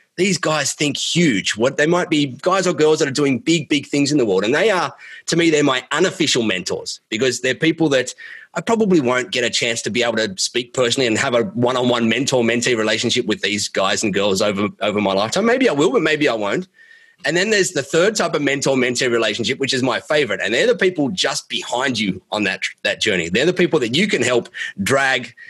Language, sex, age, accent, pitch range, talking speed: English, male, 30-49, Australian, 120-165 Hz, 240 wpm